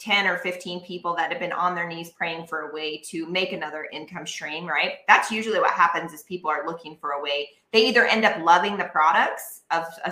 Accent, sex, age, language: American, female, 20-39, English